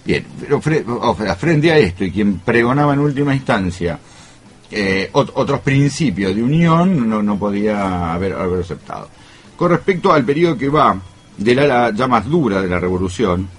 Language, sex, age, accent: Spanish, male, 70-89, Argentinian